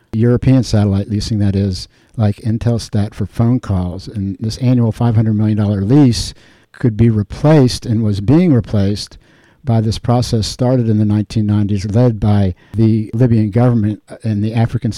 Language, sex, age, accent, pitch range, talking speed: English, male, 60-79, American, 105-125 Hz, 155 wpm